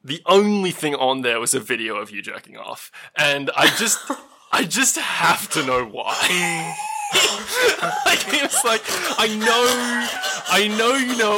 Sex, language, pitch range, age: male, English, 130-195 Hz, 20-39